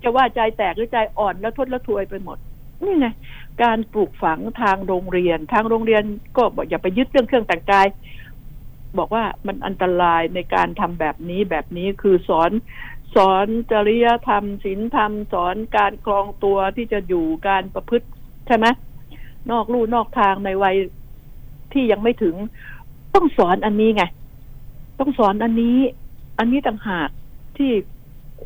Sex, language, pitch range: female, Thai, 175-225 Hz